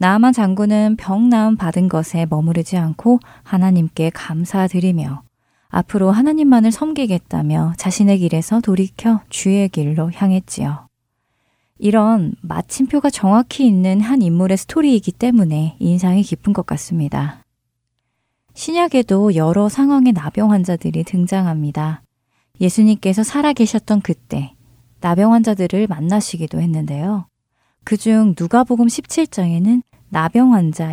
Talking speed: 95 wpm